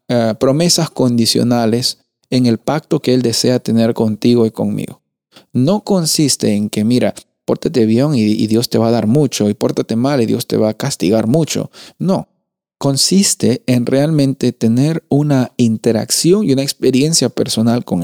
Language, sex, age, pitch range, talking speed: Spanish, male, 40-59, 115-155 Hz, 165 wpm